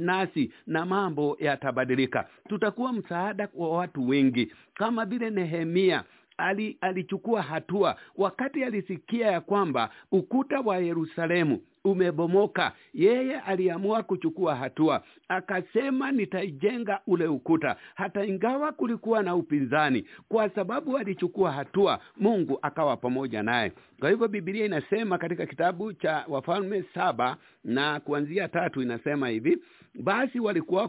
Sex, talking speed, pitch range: male, 115 wpm, 155-205 Hz